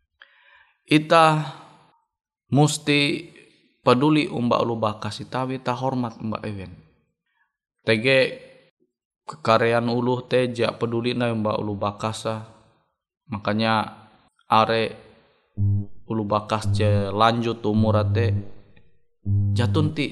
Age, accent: 20-39, native